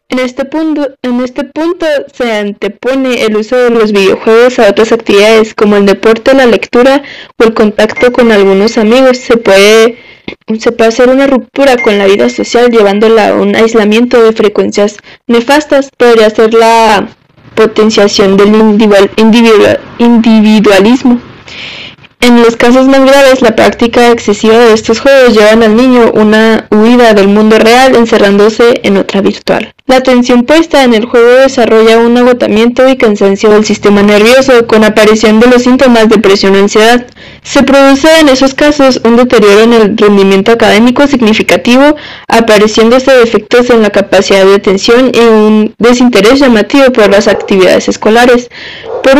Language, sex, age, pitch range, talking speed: Spanish, female, 10-29, 215-255 Hz, 155 wpm